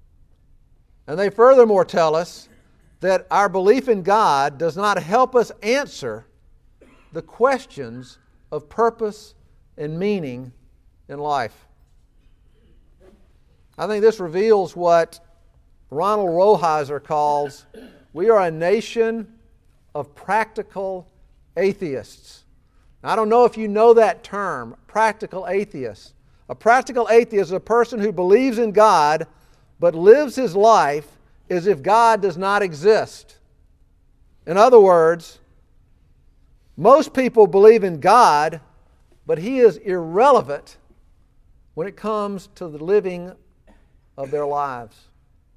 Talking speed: 115 wpm